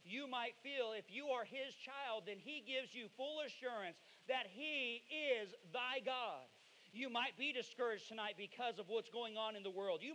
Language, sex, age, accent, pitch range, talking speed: English, male, 40-59, American, 195-260 Hz, 195 wpm